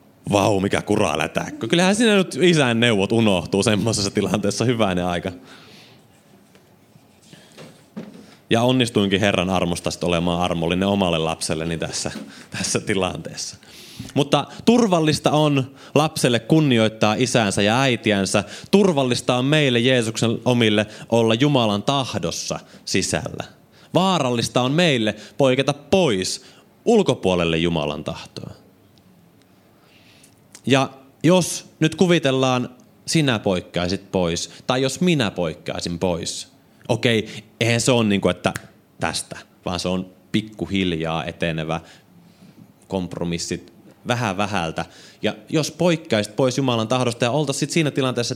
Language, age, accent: Finnish, 30-49, native